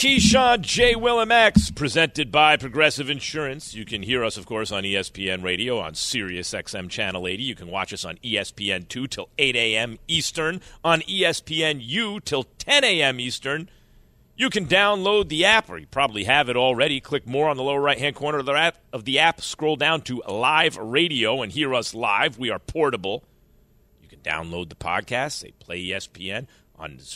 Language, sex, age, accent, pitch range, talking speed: English, male, 40-59, American, 105-165 Hz, 185 wpm